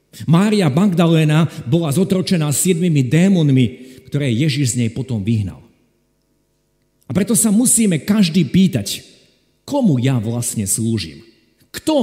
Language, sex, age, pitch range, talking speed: Slovak, male, 50-69, 120-155 Hz, 115 wpm